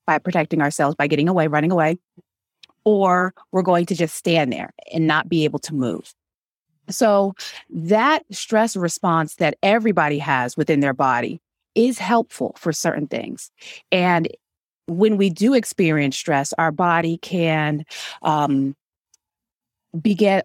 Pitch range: 155-195 Hz